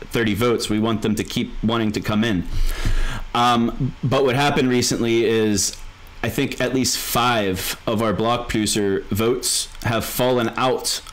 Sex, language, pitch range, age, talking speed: male, English, 105-130 Hz, 30-49, 160 wpm